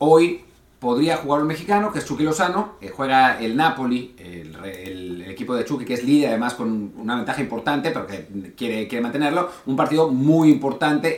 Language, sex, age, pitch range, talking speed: Spanish, male, 40-59, 120-160 Hz, 190 wpm